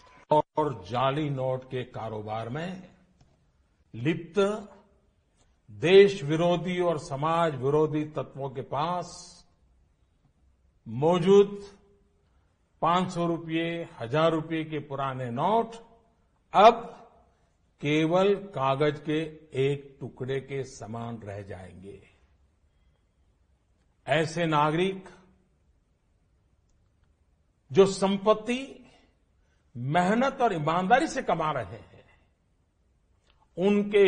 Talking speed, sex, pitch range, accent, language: 80 wpm, male, 120-195 Hz, native, Hindi